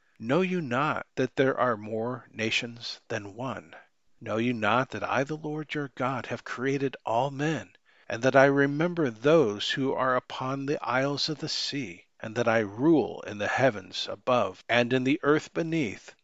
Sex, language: male, English